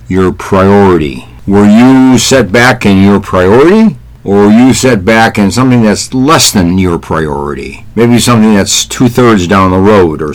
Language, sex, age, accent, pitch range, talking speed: English, male, 60-79, American, 90-120 Hz, 170 wpm